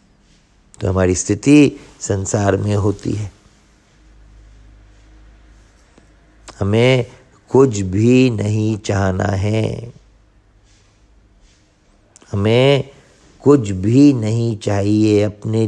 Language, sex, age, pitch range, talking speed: Hindi, male, 50-69, 100-125 Hz, 75 wpm